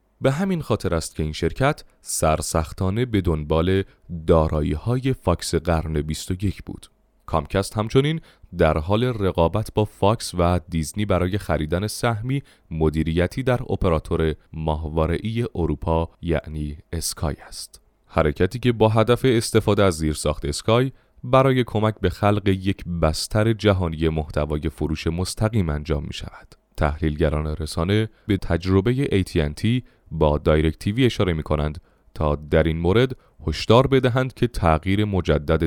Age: 30-49